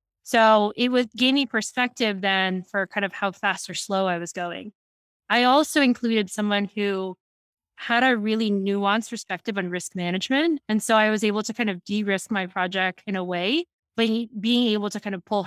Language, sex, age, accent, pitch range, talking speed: English, female, 20-39, American, 195-235 Hz, 195 wpm